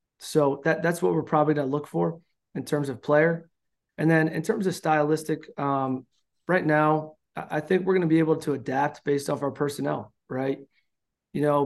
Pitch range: 140-160 Hz